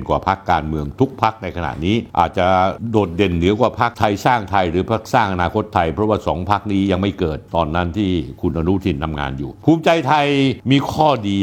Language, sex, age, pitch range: Thai, male, 60-79, 95-140 Hz